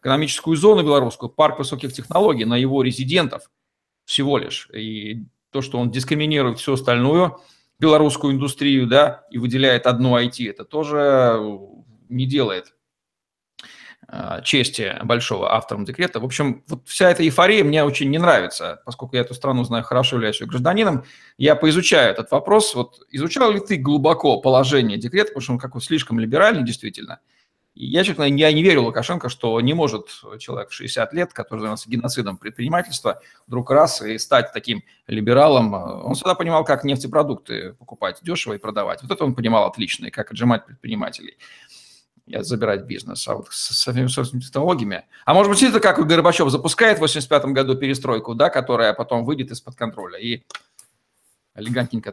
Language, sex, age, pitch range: Russian, male, 40-59, 120-155 Hz